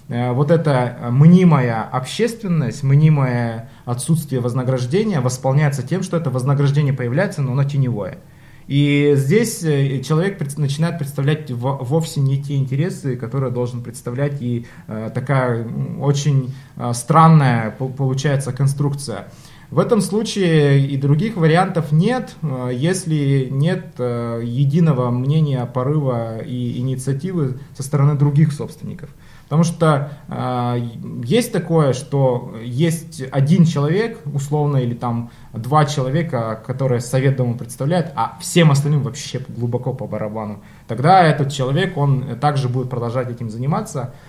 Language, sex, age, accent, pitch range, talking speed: Russian, male, 20-39, native, 125-155 Hz, 115 wpm